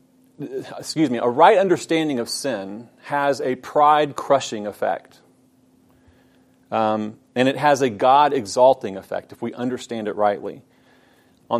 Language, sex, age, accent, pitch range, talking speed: English, male, 40-59, American, 120-145 Hz, 125 wpm